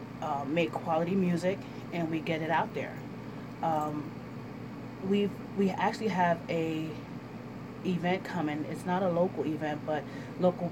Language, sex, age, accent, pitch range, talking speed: English, female, 30-49, American, 155-180 Hz, 140 wpm